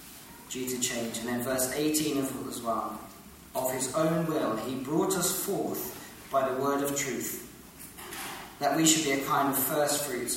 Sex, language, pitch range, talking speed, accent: male, English, 130-175 Hz, 185 wpm, British